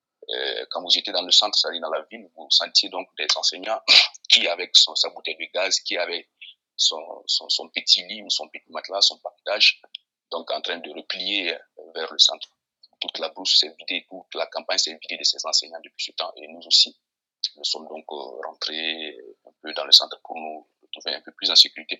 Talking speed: 220 wpm